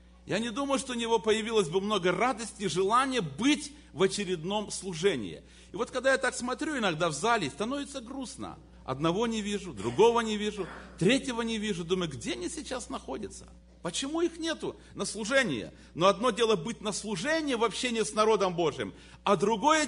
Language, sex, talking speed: Russian, male, 180 wpm